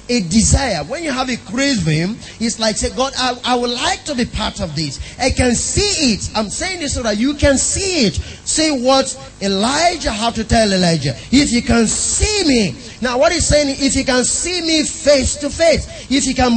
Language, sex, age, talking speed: English, male, 30-49, 220 wpm